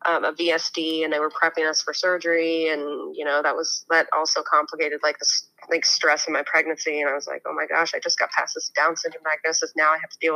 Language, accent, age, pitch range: English, American, 20-39, 160-200 Hz